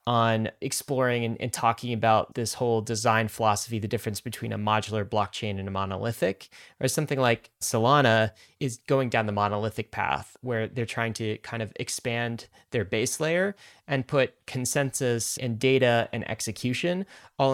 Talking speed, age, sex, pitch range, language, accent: 160 wpm, 30-49, male, 110-130 Hz, English, American